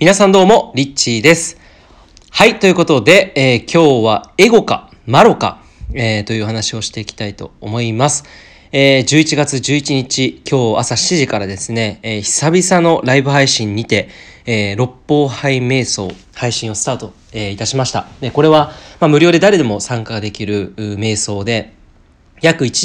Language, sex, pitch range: Japanese, male, 105-145 Hz